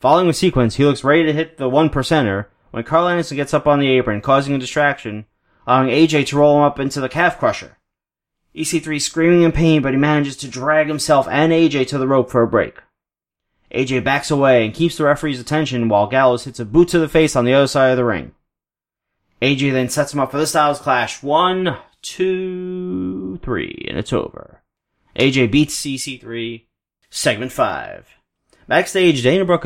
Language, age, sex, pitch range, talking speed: English, 30-49, male, 120-150 Hz, 195 wpm